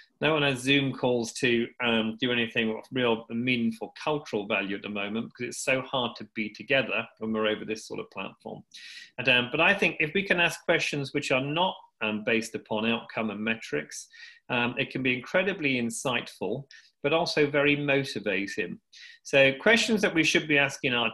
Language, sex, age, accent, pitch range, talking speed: English, male, 40-59, British, 120-150 Hz, 195 wpm